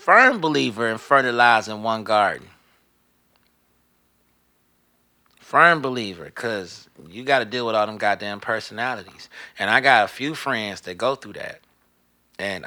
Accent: American